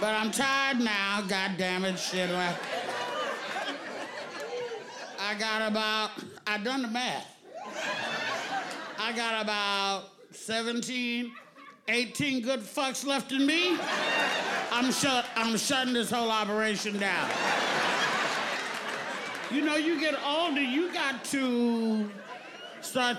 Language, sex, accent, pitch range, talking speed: English, male, American, 225-300 Hz, 105 wpm